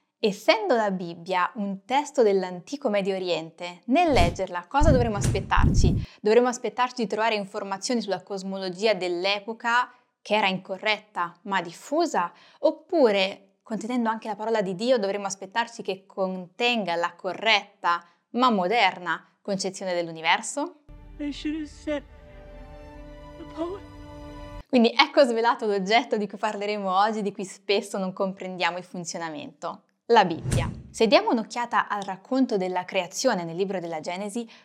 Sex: female